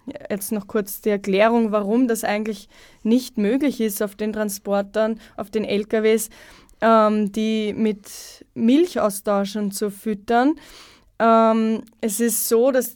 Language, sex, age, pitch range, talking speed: German, female, 20-39, 210-240 Hz, 130 wpm